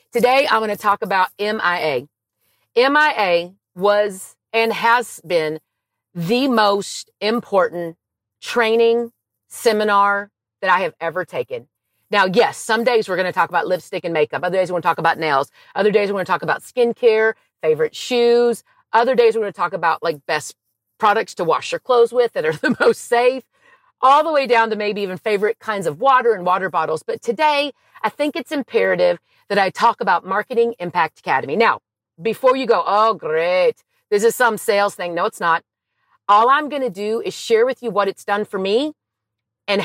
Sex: female